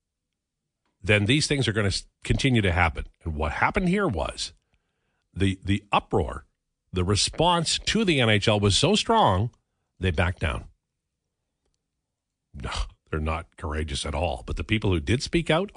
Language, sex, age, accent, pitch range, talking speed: English, male, 50-69, American, 90-120 Hz, 155 wpm